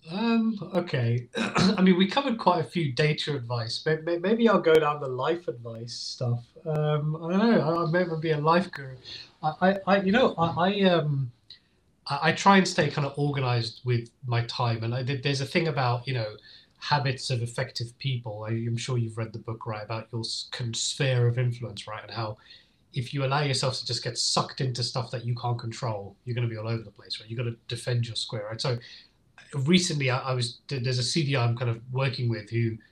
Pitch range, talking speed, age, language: 115-150 Hz, 215 wpm, 30-49, English